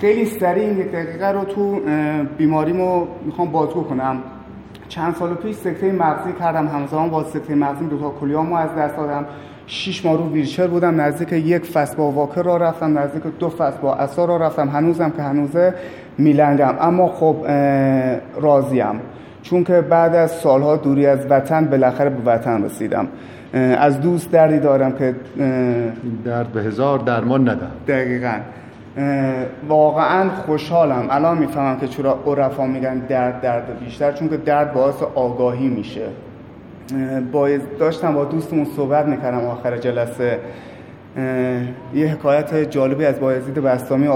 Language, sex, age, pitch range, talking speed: Persian, male, 30-49, 130-160 Hz, 140 wpm